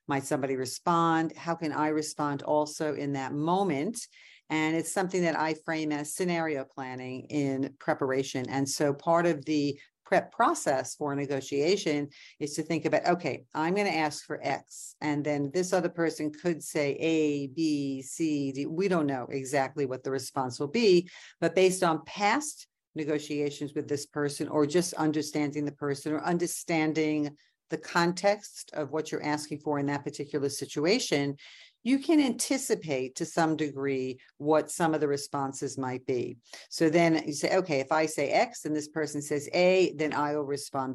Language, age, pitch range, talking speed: English, 50-69, 145-170 Hz, 175 wpm